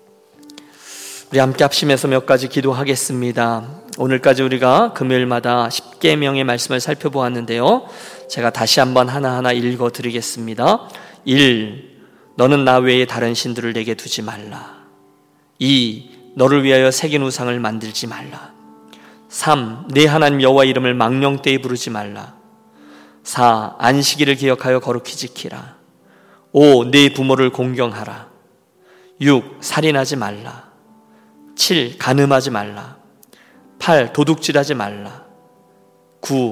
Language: Korean